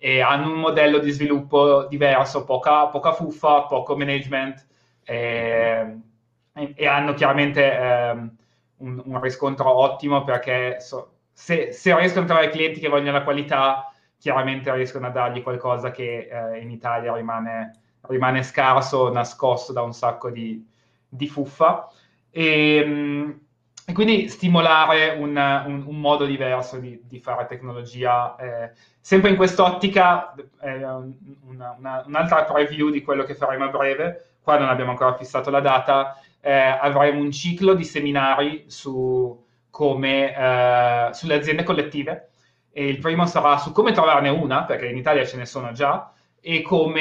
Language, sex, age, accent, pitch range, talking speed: Italian, male, 20-39, native, 125-150 Hz, 150 wpm